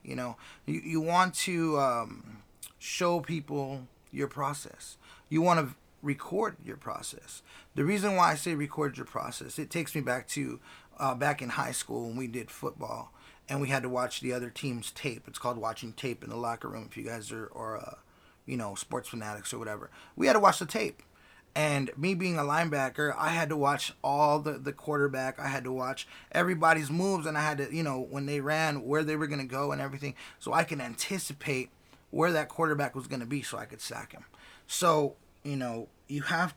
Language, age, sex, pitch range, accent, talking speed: English, 20-39, male, 125-160 Hz, American, 215 wpm